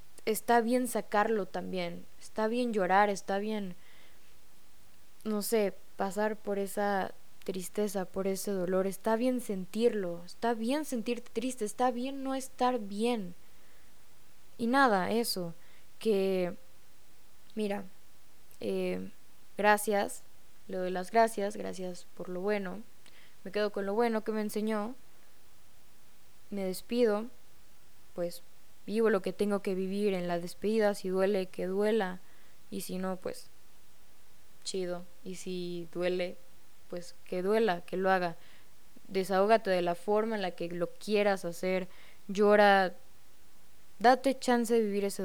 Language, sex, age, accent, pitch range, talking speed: Spanish, female, 10-29, Mexican, 185-230 Hz, 130 wpm